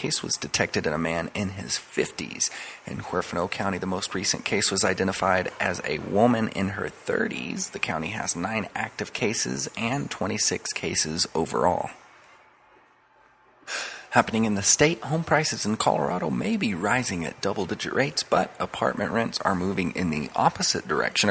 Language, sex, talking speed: English, male, 165 wpm